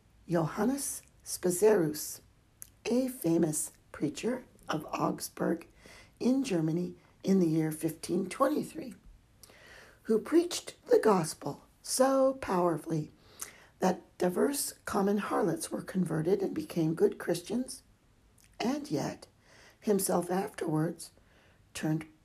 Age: 60-79